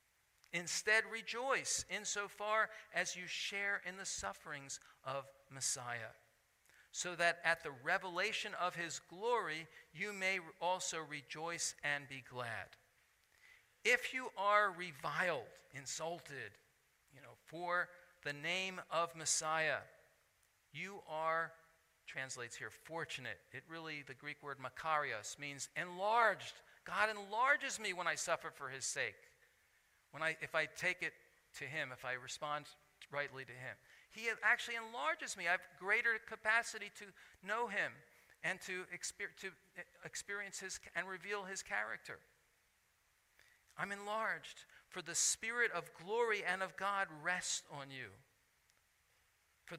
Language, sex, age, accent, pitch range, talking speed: English, male, 50-69, American, 135-195 Hz, 135 wpm